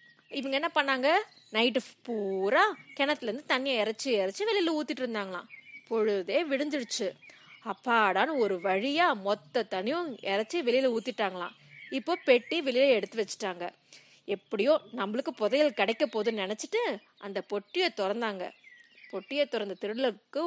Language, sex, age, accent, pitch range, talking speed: Tamil, female, 20-39, native, 200-285 Hz, 65 wpm